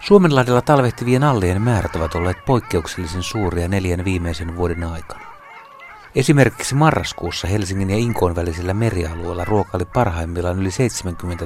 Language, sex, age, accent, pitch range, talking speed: Finnish, male, 60-79, native, 90-110 Hz, 120 wpm